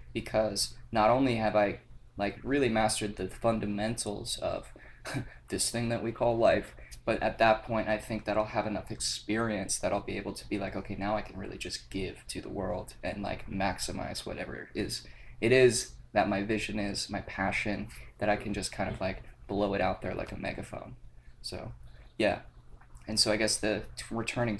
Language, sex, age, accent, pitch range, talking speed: English, male, 20-39, American, 100-110 Hz, 200 wpm